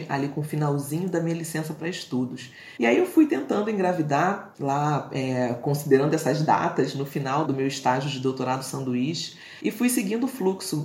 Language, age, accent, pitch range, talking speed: Portuguese, 30-49, Brazilian, 145-185 Hz, 175 wpm